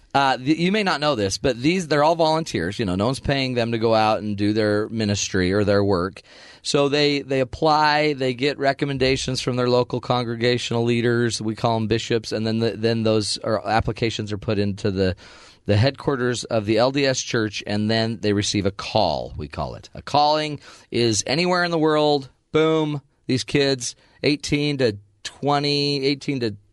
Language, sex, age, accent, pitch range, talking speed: English, male, 30-49, American, 100-135 Hz, 190 wpm